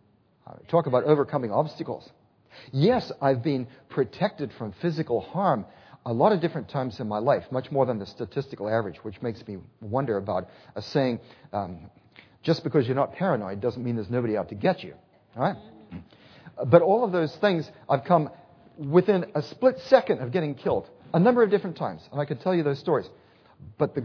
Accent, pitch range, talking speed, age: American, 120-165 Hz, 185 wpm, 40-59